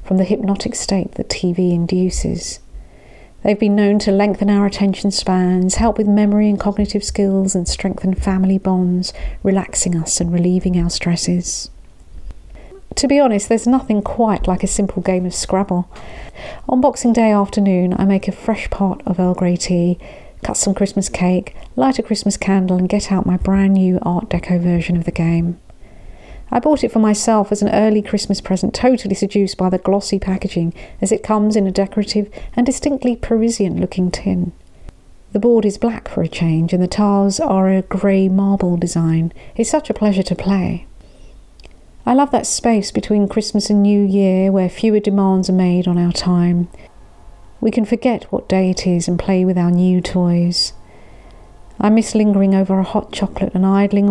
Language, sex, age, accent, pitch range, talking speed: English, female, 50-69, British, 180-210 Hz, 180 wpm